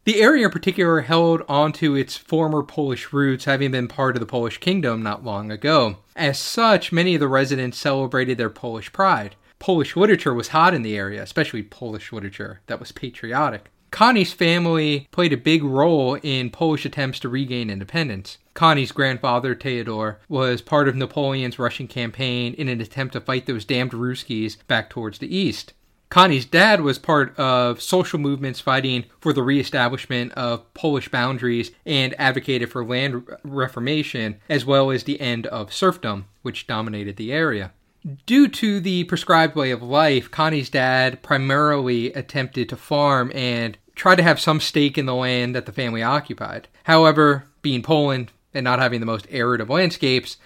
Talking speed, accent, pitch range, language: 170 wpm, American, 120-155 Hz, English